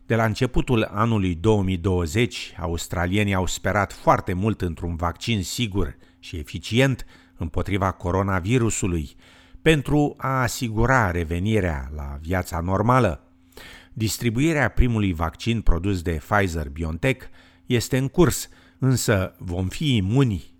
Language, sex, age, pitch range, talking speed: Romanian, male, 50-69, 85-120 Hz, 110 wpm